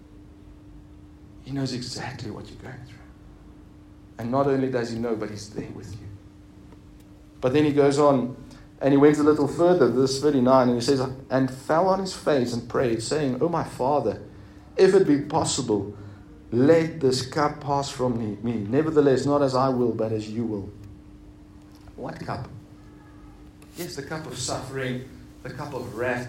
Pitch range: 105-150 Hz